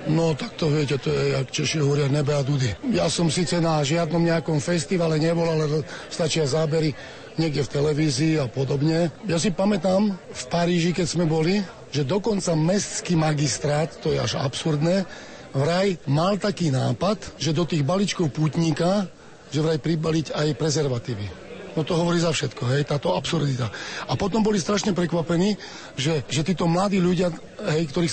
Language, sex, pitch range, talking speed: Slovak, male, 150-170 Hz, 165 wpm